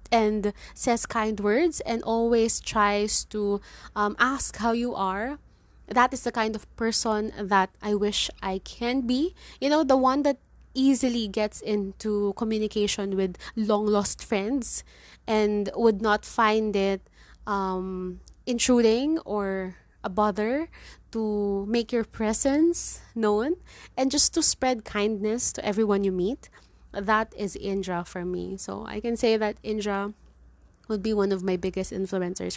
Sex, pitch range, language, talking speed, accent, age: female, 195-235 Hz, English, 145 wpm, Filipino, 20-39